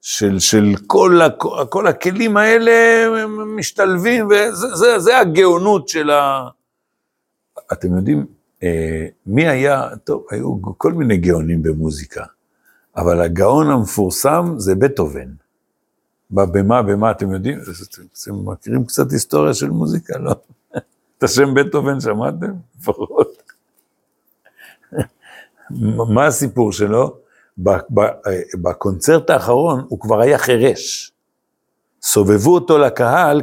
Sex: male